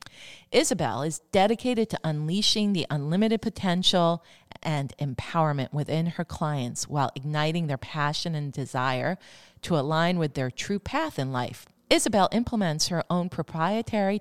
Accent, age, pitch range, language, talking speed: American, 40-59, 140-180 Hz, English, 135 wpm